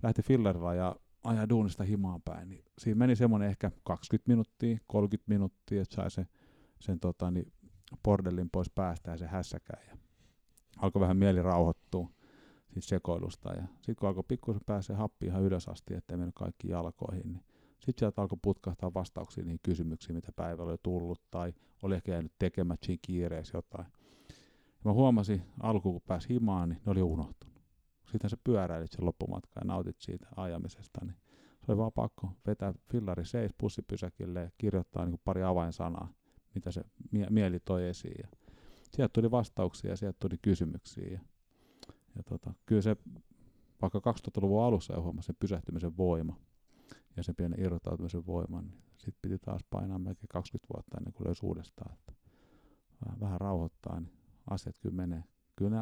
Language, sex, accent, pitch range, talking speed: Finnish, male, native, 85-105 Hz, 165 wpm